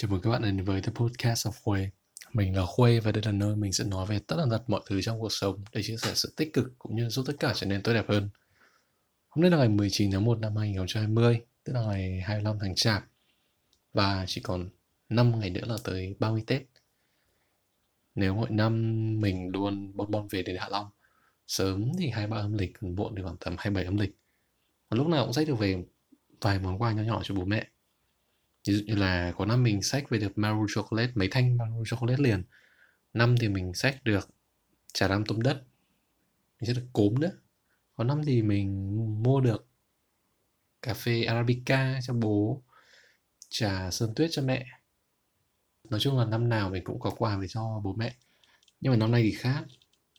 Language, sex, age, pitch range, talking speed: Vietnamese, male, 20-39, 100-120 Hz, 205 wpm